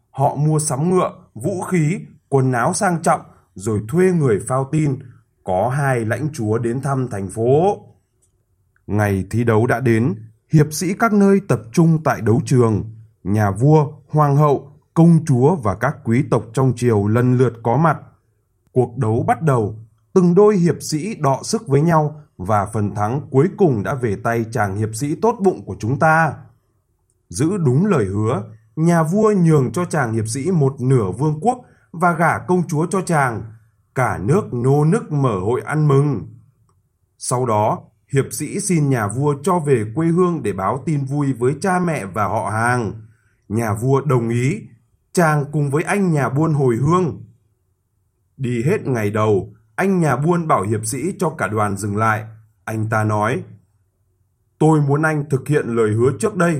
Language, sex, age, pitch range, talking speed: Vietnamese, male, 20-39, 110-155 Hz, 180 wpm